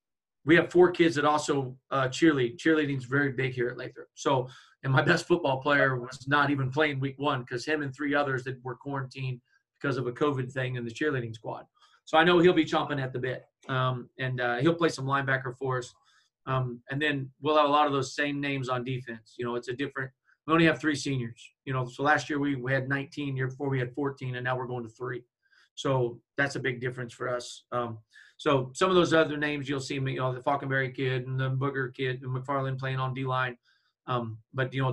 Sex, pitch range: male, 125-145 Hz